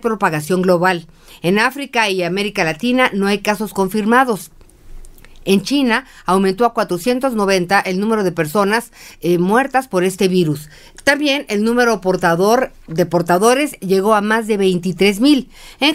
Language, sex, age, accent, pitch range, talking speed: English, female, 40-59, Mexican, 185-245 Hz, 140 wpm